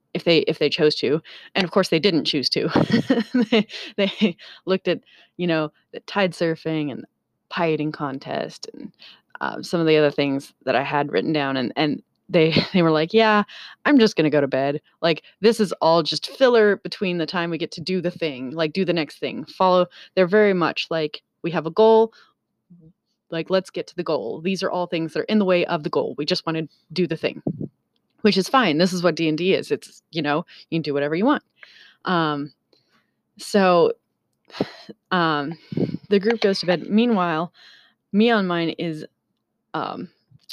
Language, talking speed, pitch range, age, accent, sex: English, 205 wpm, 160-205 Hz, 20-39, American, female